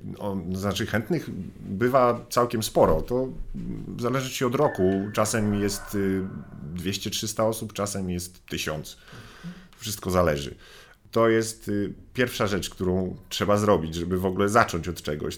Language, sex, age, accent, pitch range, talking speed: Polish, male, 40-59, native, 85-100 Hz, 130 wpm